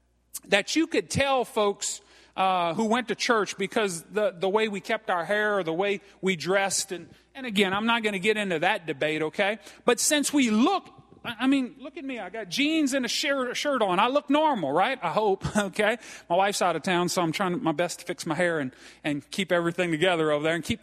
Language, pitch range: English, 190-275 Hz